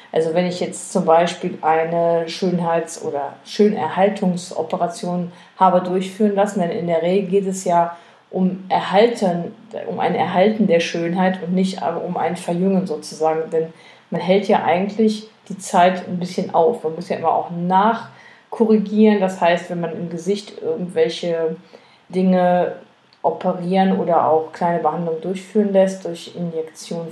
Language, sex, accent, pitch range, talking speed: German, female, German, 170-195 Hz, 145 wpm